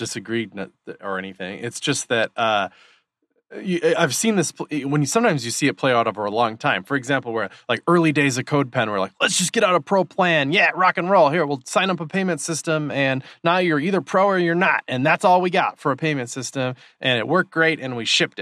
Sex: male